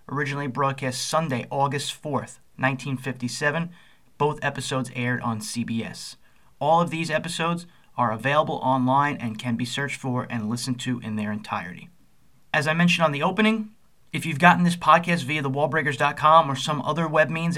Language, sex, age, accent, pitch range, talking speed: English, male, 30-49, American, 130-170 Hz, 165 wpm